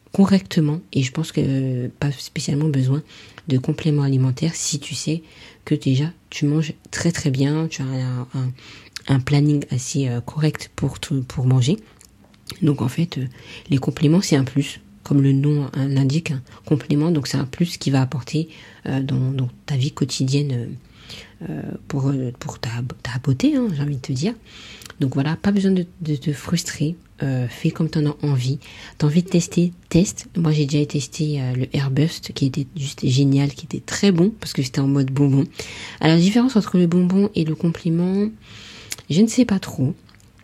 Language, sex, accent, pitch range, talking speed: French, female, French, 135-165 Hz, 195 wpm